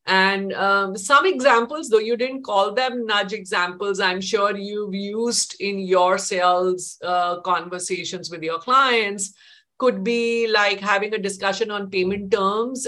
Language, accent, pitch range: English, Indian, 180-205 Hz